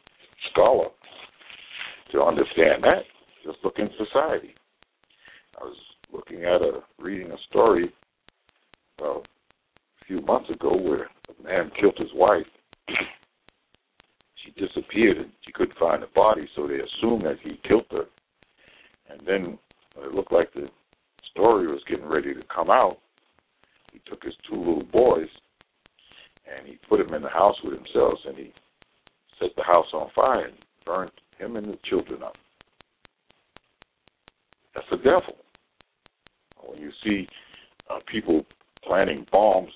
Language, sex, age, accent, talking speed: English, male, 60-79, American, 140 wpm